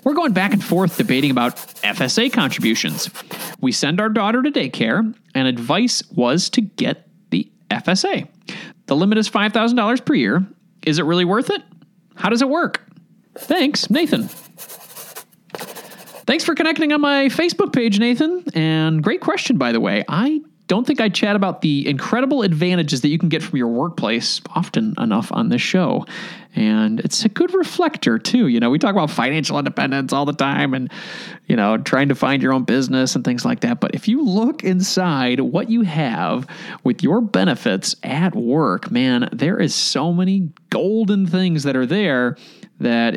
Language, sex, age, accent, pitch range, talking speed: English, male, 30-49, American, 155-240 Hz, 175 wpm